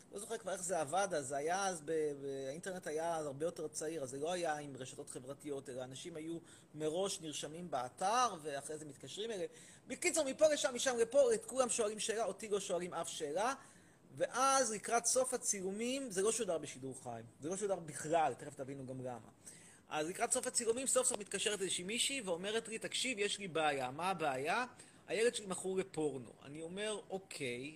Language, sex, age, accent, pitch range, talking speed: Hebrew, male, 30-49, native, 165-260 Hz, 195 wpm